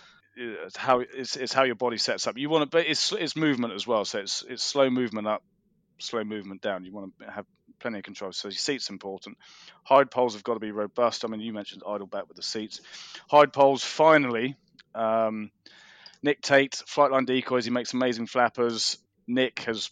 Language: English